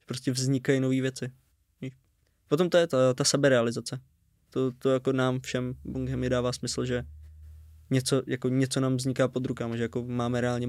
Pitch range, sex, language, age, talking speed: 115-135 Hz, male, Czech, 20-39, 170 wpm